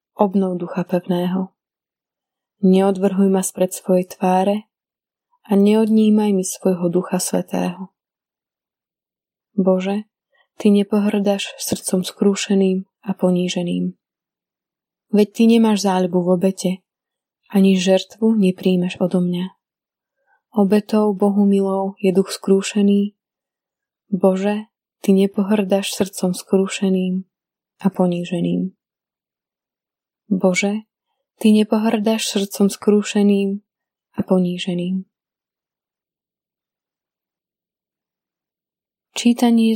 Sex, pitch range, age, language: female, 185-210 Hz, 20-39, Slovak